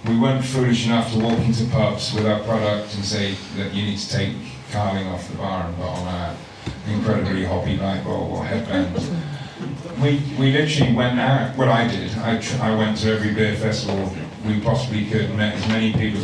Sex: male